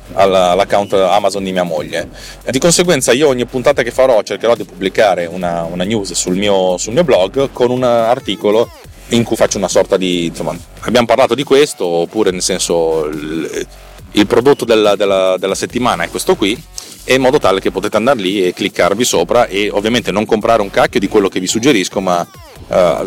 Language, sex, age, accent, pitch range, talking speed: Italian, male, 30-49, native, 95-115 Hz, 190 wpm